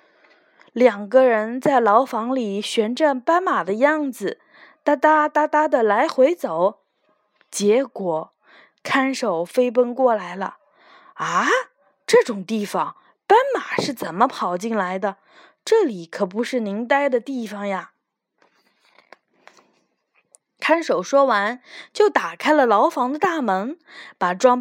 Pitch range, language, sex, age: 205-310 Hz, Chinese, female, 20-39